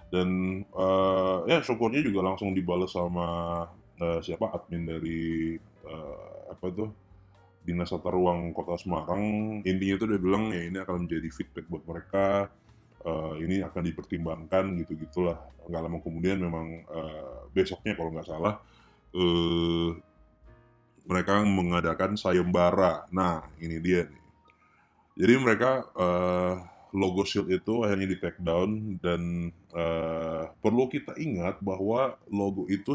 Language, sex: Indonesian, male